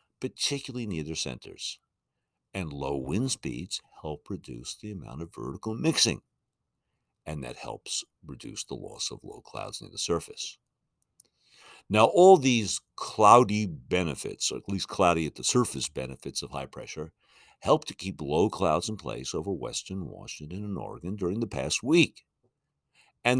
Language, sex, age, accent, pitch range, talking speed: English, male, 60-79, American, 75-120 Hz, 155 wpm